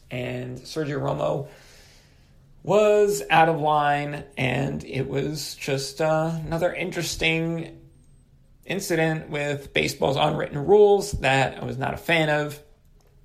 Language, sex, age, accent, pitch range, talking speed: English, male, 30-49, American, 125-165 Hz, 120 wpm